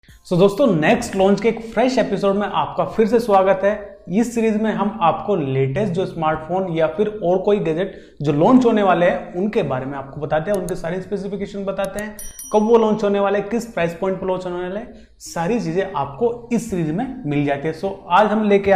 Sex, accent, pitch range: male, native, 155-200 Hz